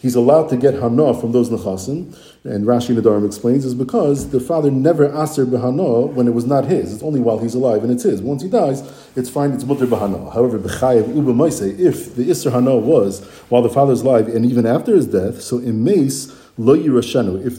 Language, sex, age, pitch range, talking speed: English, male, 40-59, 115-140 Hz, 210 wpm